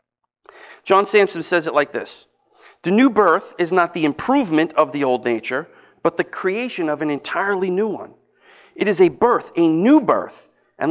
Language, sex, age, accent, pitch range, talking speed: English, male, 40-59, American, 155-220 Hz, 180 wpm